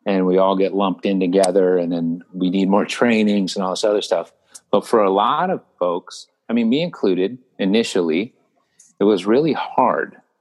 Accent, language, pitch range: American, English, 95-110 Hz